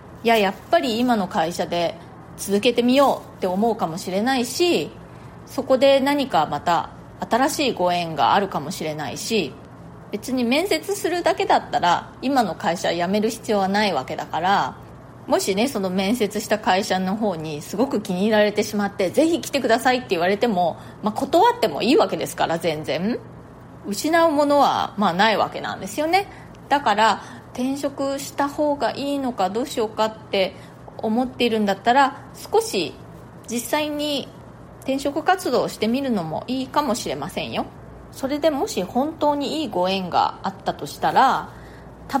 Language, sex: Japanese, female